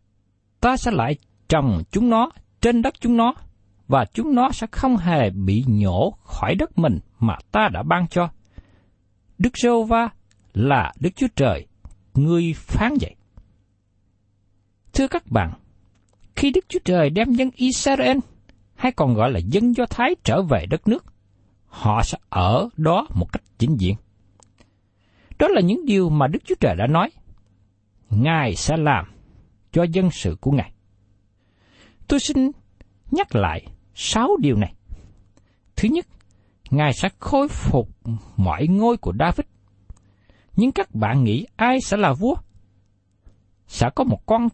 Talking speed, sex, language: 150 wpm, male, Vietnamese